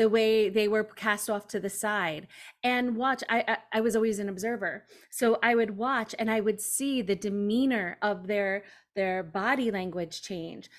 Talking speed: 190 wpm